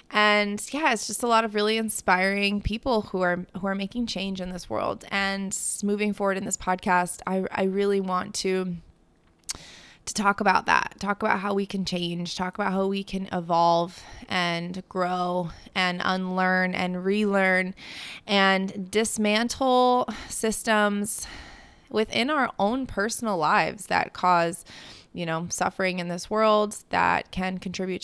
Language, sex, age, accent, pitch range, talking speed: English, female, 20-39, American, 185-210 Hz, 150 wpm